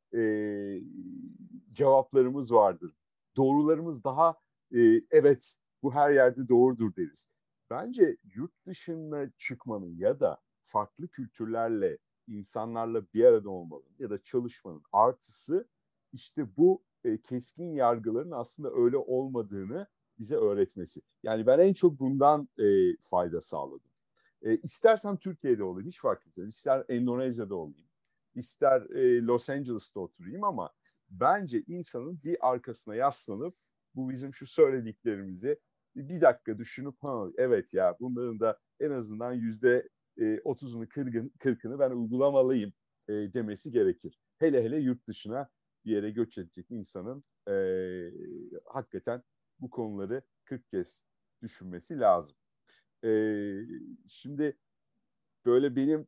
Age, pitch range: 50-69, 115-170 Hz